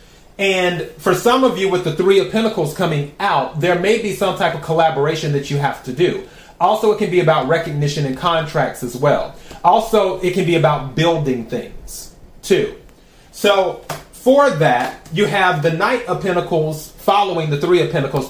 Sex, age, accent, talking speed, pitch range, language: male, 30-49, American, 185 wpm, 155-185 Hz, English